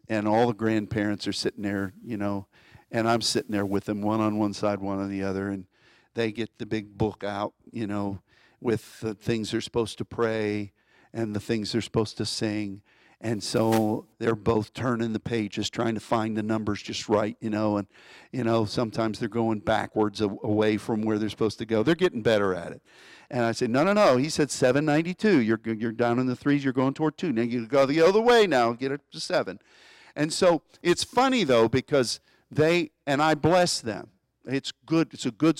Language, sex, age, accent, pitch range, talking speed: English, male, 50-69, American, 105-140 Hz, 215 wpm